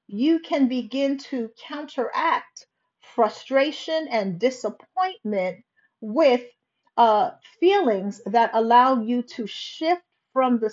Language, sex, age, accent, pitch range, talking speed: English, female, 50-69, American, 215-280 Hz, 100 wpm